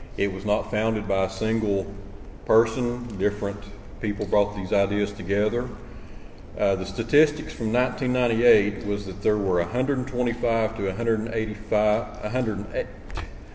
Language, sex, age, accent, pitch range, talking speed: English, male, 40-59, American, 95-120 Hz, 115 wpm